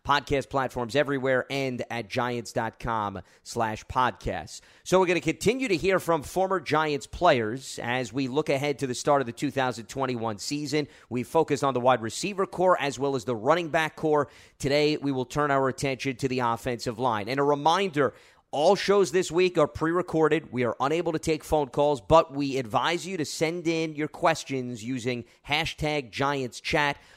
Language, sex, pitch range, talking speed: English, male, 125-160 Hz, 180 wpm